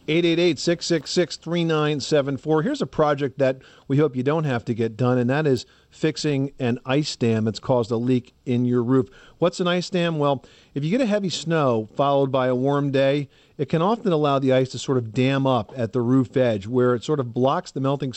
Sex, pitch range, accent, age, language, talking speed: male, 125-165 Hz, American, 50-69, English, 210 wpm